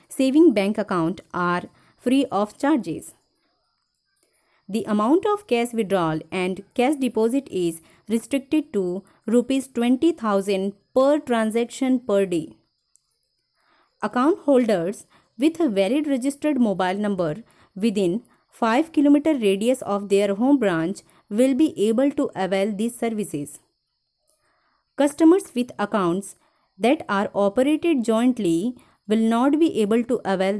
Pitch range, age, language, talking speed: 195-270 Hz, 20-39, Hindi, 120 wpm